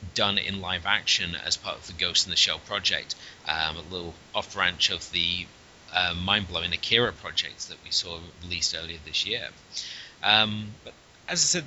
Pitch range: 85-110 Hz